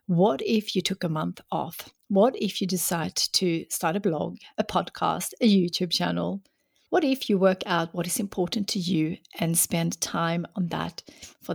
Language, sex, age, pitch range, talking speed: English, female, 60-79, 175-225 Hz, 185 wpm